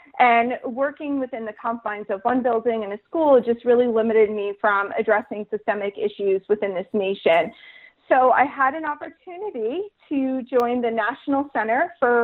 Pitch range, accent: 230-275 Hz, American